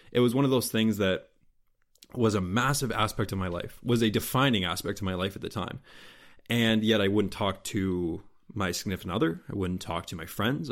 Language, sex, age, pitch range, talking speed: English, male, 20-39, 100-115 Hz, 220 wpm